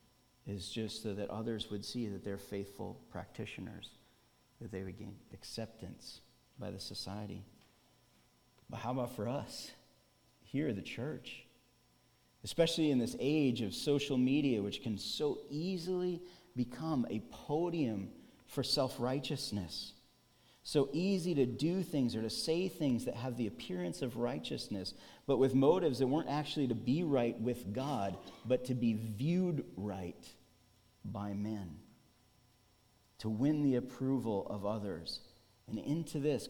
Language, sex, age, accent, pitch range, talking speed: English, male, 40-59, American, 105-130 Hz, 140 wpm